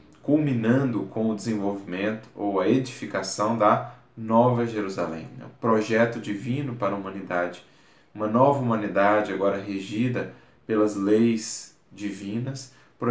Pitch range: 100-120 Hz